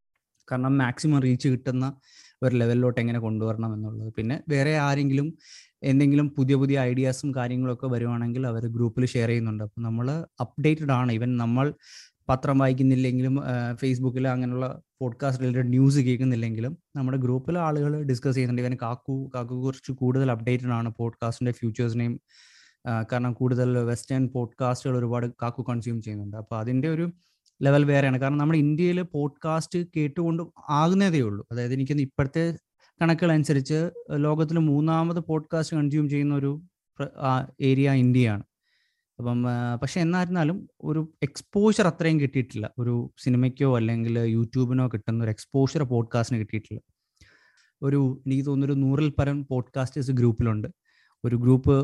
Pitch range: 120-145 Hz